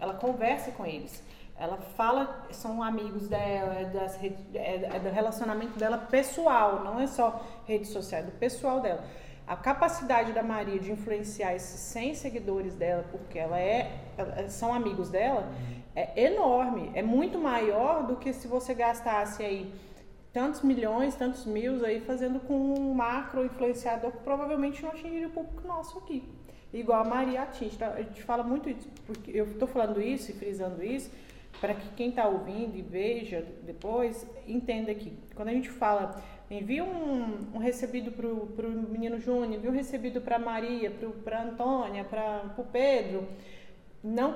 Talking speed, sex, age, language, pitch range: 165 wpm, female, 20-39, Portuguese, 210-265 Hz